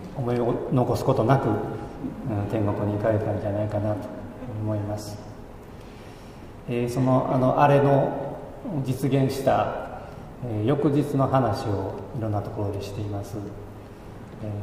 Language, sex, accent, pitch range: Japanese, male, native, 105-135 Hz